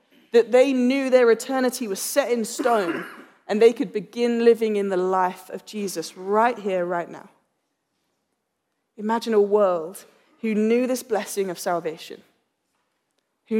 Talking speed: 145 wpm